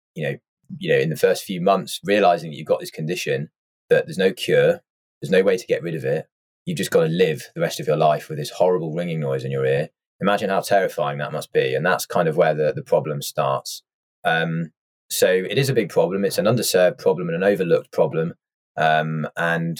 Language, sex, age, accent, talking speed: English, male, 20-39, British, 235 wpm